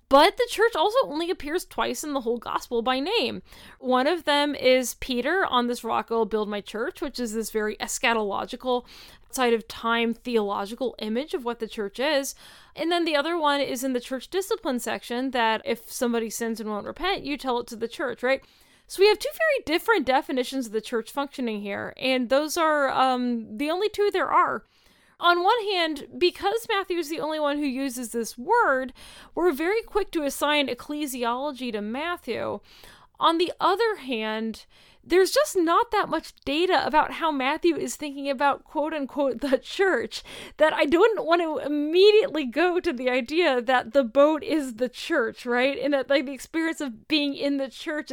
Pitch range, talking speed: 245-335 Hz, 190 wpm